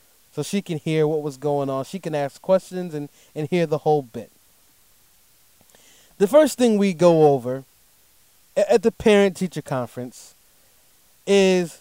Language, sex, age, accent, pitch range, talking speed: English, male, 30-49, American, 145-220 Hz, 145 wpm